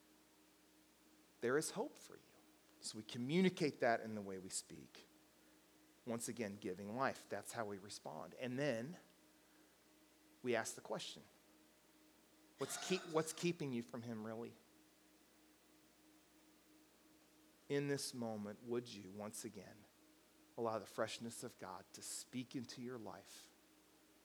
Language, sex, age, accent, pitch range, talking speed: English, male, 40-59, American, 105-125 Hz, 130 wpm